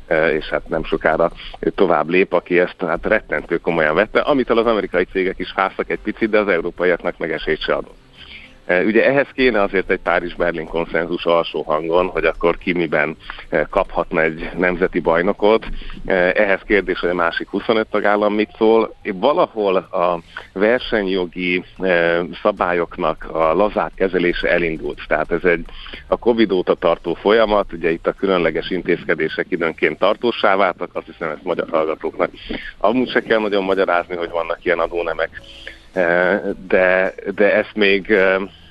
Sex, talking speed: male, 150 wpm